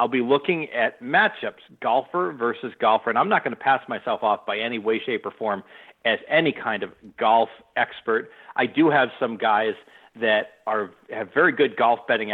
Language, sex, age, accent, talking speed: English, male, 40-59, American, 195 wpm